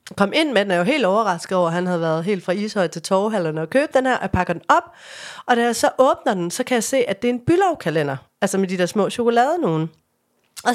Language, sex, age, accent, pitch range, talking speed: English, female, 30-49, Danish, 195-255 Hz, 255 wpm